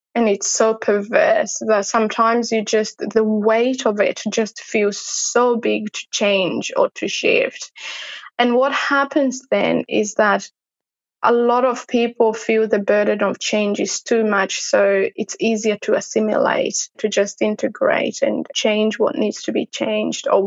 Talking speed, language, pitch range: 160 wpm, English, 210-250 Hz